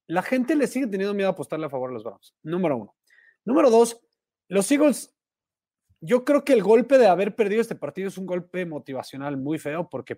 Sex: male